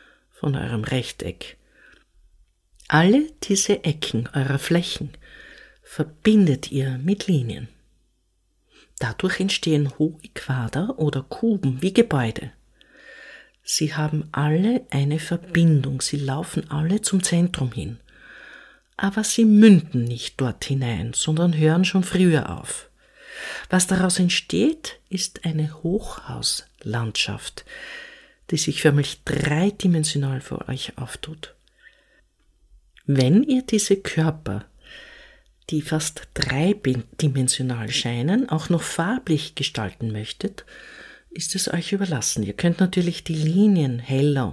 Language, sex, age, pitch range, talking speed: German, female, 50-69, 135-190 Hz, 105 wpm